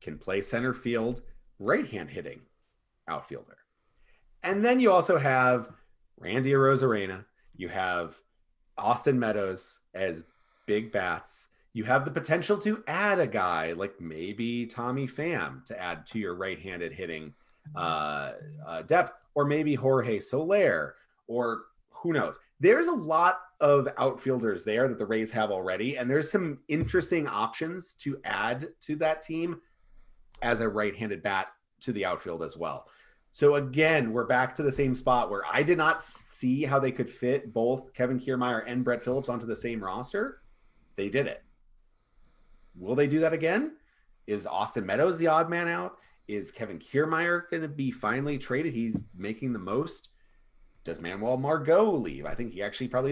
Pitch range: 115-160 Hz